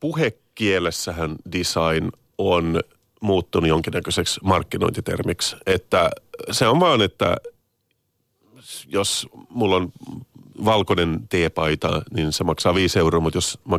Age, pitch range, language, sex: 40-59, 85-115 Hz, Finnish, male